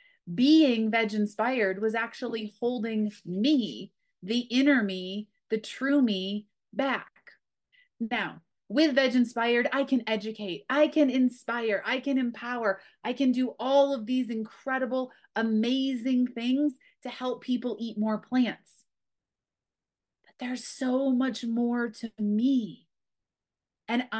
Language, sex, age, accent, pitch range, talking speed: English, female, 30-49, American, 210-255 Hz, 120 wpm